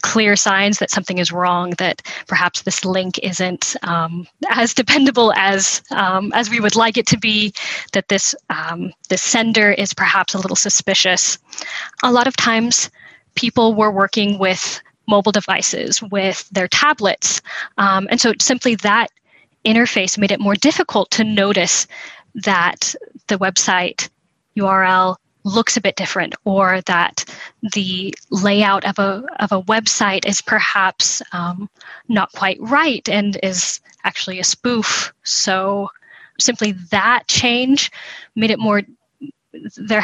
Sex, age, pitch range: female, 10-29, 190-225 Hz